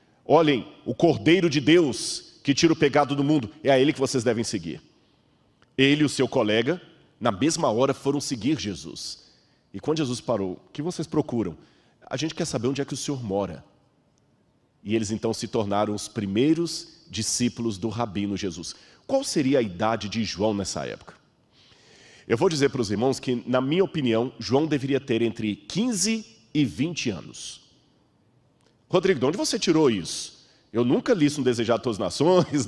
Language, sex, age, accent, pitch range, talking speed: Portuguese, male, 40-59, Brazilian, 115-155 Hz, 180 wpm